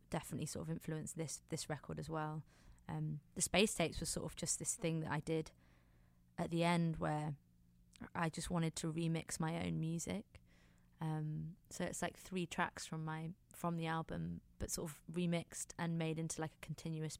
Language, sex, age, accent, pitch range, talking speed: English, female, 20-39, British, 145-170 Hz, 190 wpm